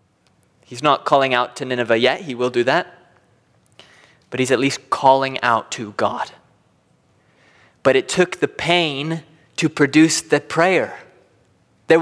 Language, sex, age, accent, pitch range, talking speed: English, male, 20-39, American, 135-180 Hz, 145 wpm